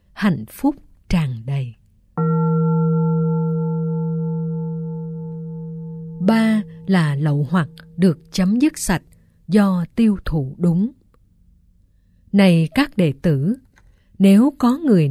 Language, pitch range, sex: Vietnamese, 155-215 Hz, female